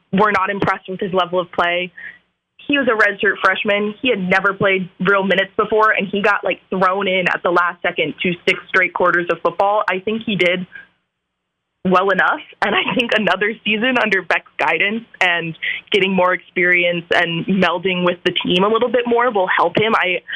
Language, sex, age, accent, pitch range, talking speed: English, female, 20-39, American, 175-210 Hz, 200 wpm